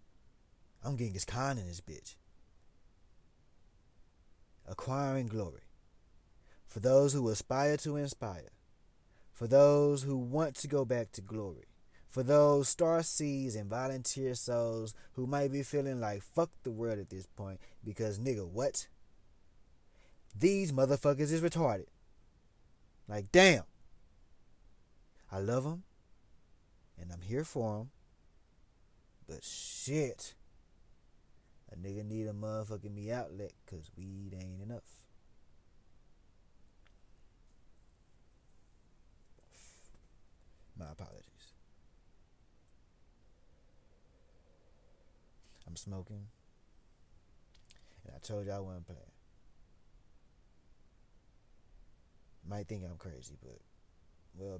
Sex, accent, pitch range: male, American, 85-125 Hz